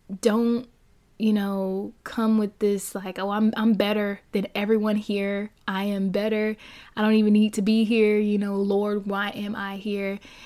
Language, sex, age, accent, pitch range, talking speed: English, female, 20-39, American, 205-235 Hz, 180 wpm